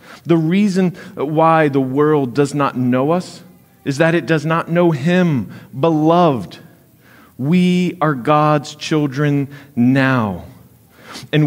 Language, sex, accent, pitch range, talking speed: English, male, American, 115-150 Hz, 120 wpm